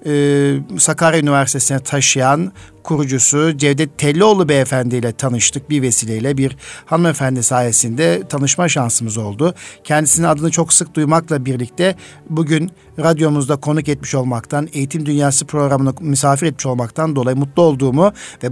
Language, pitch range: Turkish, 135-160 Hz